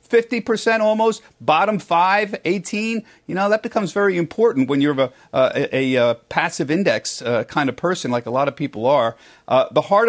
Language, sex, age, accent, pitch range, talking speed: English, male, 50-69, American, 125-170 Hz, 190 wpm